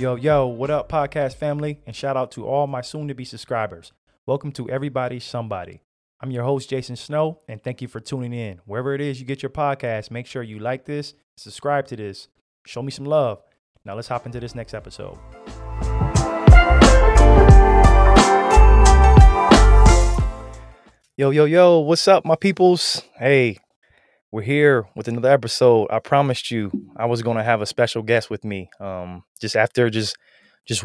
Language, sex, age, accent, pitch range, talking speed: English, male, 20-39, American, 105-130 Hz, 170 wpm